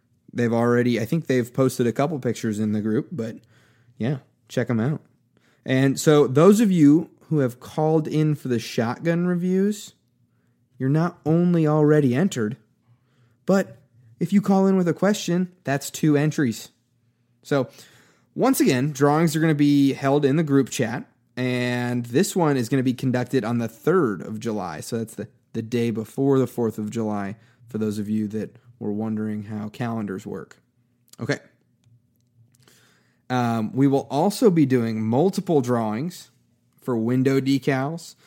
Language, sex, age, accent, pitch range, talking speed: English, male, 20-39, American, 120-150 Hz, 165 wpm